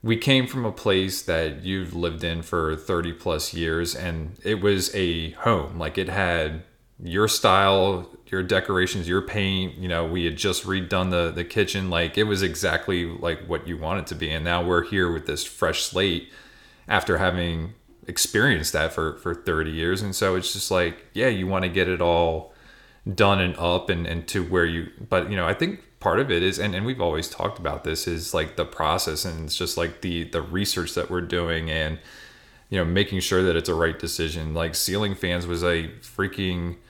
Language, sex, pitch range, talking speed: English, male, 85-95 Hz, 210 wpm